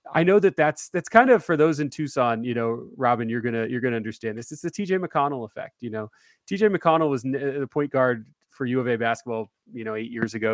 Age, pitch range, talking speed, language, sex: 30-49, 115-140 Hz, 255 wpm, English, male